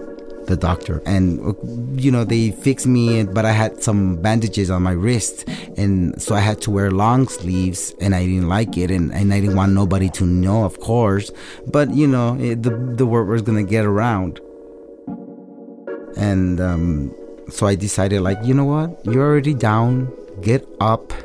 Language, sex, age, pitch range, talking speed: English, male, 30-49, 90-115 Hz, 185 wpm